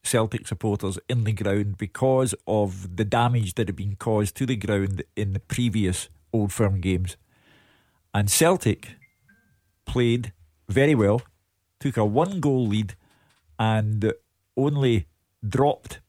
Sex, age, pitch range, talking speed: male, 50-69, 100-120 Hz, 130 wpm